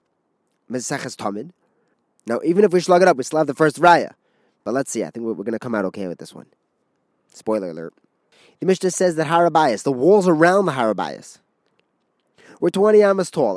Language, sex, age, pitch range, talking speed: English, male, 30-49, 135-185 Hz, 190 wpm